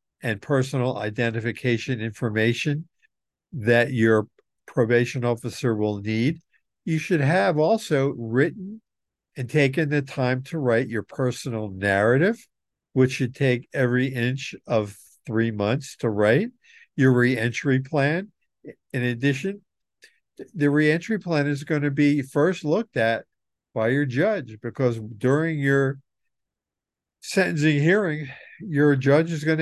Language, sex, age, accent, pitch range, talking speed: English, male, 50-69, American, 120-160 Hz, 120 wpm